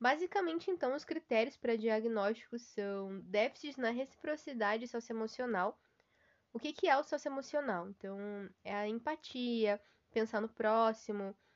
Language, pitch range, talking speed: Portuguese, 205-260 Hz, 120 wpm